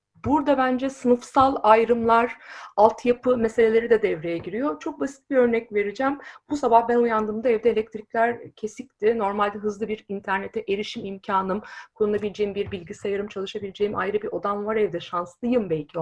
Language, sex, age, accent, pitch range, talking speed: Turkish, female, 50-69, native, 185-235 Hz, 140 wpm